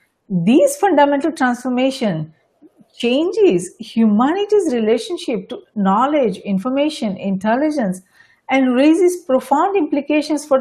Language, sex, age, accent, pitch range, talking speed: English, female, 50-69, Indian, 215-280 Hz, 85 wpm